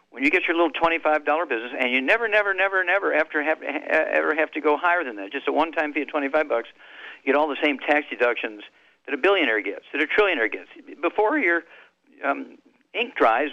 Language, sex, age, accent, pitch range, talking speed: English, male, 50-69, American, 125-165 Hz, 215 wpm